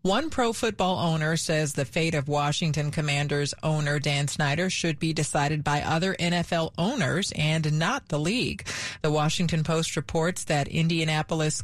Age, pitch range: 40-59, 150-185 Hz